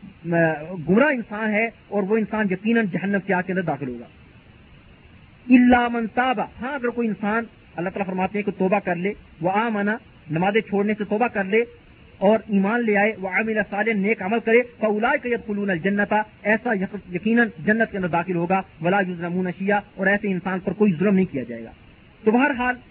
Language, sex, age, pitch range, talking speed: Urdu, male, 40-59, 185-225 Hz, 165 wpm